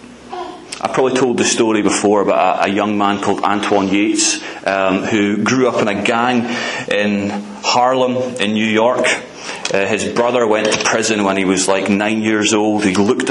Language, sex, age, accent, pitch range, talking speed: English, male, 30-49, British, 100-115 Hz, 180 wpm